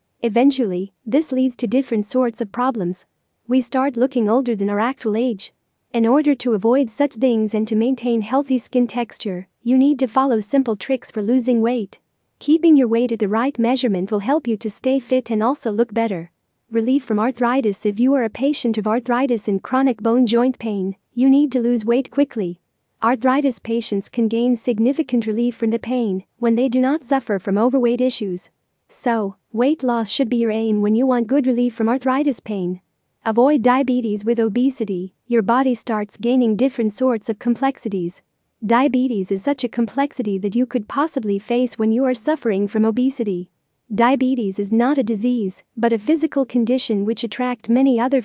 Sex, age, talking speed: female, 40-59, 185 wpm